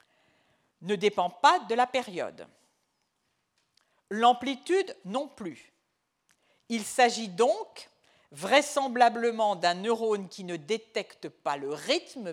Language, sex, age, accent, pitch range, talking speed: French, female, 50-69, French, 205-315 Hz, 100 wpm